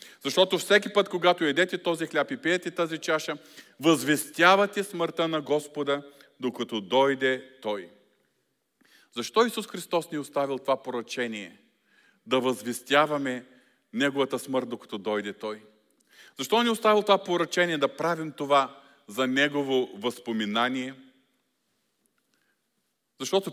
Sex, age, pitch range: male, 40-59, 125-165 Hz